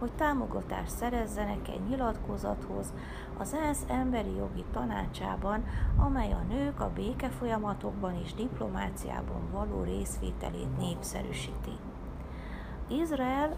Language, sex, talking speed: Hungarian, female, 95 wpm